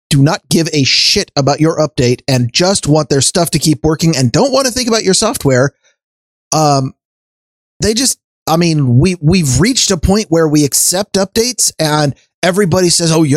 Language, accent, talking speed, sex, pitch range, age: English, American, 195 wpm, male, 135-170 Hz, 30-49